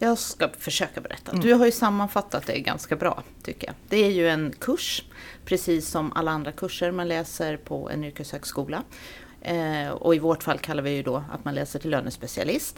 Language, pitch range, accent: Swedish, 160-220 Hz, native